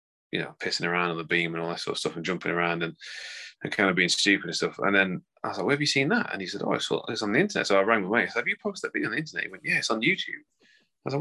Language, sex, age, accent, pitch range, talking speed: English, male, 20-39, British, 90-125 Hz, 350 wpm